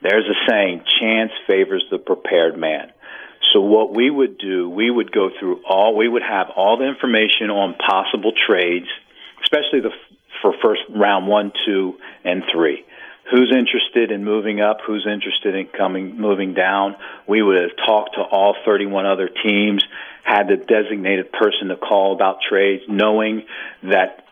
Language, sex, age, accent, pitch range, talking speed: English, male, 50-69, American, 100-120 Hz, 165 wpm